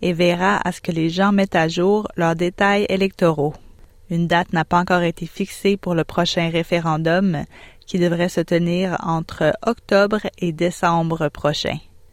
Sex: female